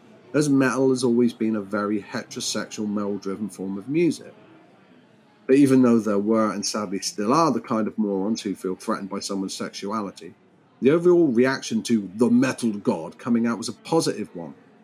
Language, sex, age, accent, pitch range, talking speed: English, male, 40-59, British, 105-140 Hz, 180 wpm